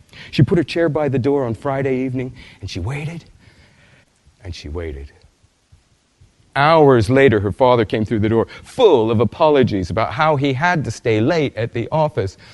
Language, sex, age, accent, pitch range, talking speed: English, male, 40-59, American, 100-155 Hz, 175 wpm